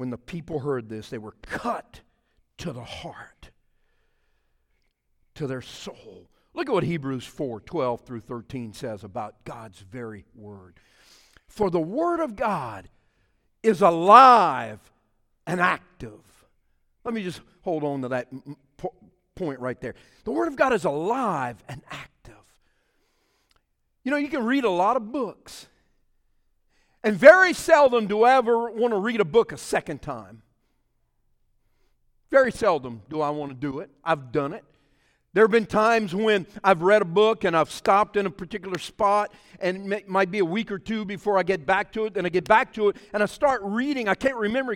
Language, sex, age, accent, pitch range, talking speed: English, male, 50-69, American, 145-235 Hz, 175 wpm